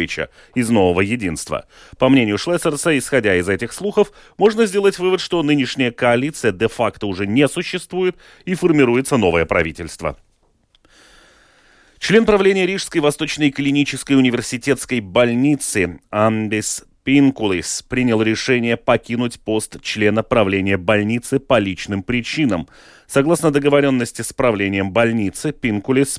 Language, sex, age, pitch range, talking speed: Russian, male, 30-49, 110-145 Hz, 110 wpm